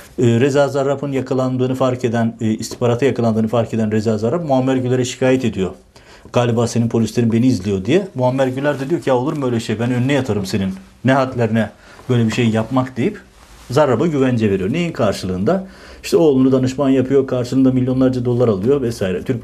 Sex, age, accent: male, 60-79, native